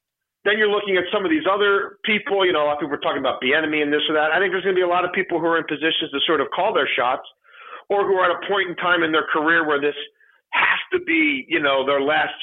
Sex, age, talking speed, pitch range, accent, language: male, 40-59, 300 wpm, 130-195 Hz, American, English